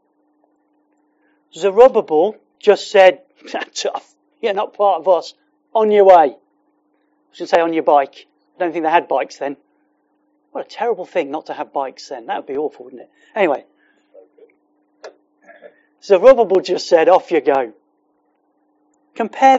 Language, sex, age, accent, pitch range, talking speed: English, male, 40-59, British, 180-280 Hz, 155 wpm